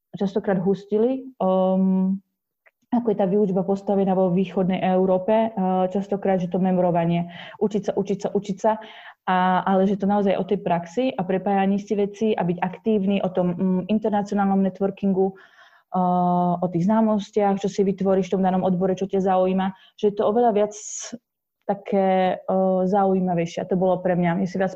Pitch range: 185-200 Hz